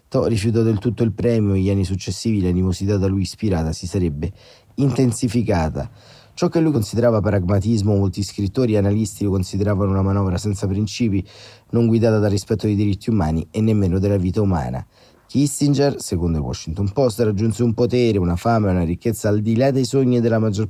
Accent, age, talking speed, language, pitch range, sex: native, 30-49, 185 wpm, Italian, 95-115 Hz, male